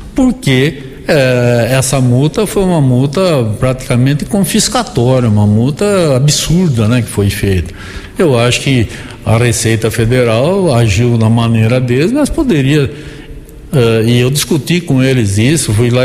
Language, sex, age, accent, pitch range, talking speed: Portuguese, male, 60-79, Brazilian, 115-155 Hz, 140 wpm